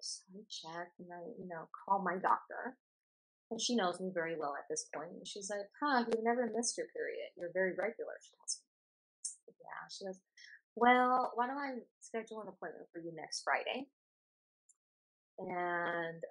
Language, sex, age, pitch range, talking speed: English, female, 30-49, 175-245 Hz, 180 wpm